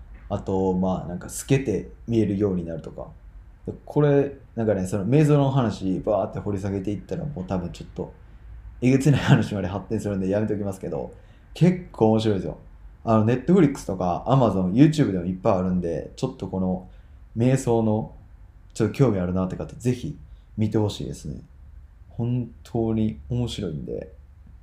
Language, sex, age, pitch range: Japanese, male, 20-39, 95-130 Hz